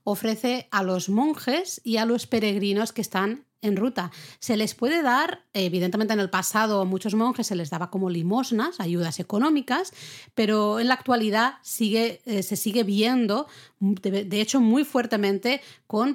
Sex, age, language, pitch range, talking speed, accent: female, 30-49, Spanish, 190-245 Hz, 165 wpm, Spanish